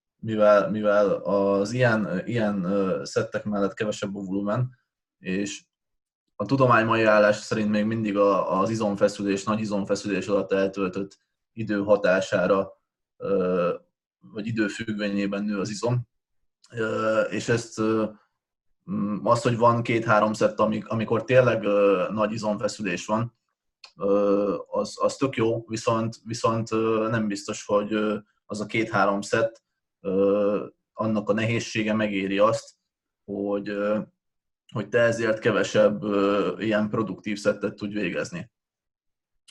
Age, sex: 20-39, male